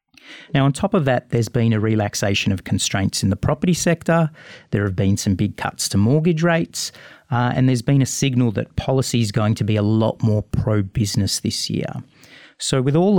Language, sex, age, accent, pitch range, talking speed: English, male, 40-59, Australian, 105-130 Hz, 205 wpm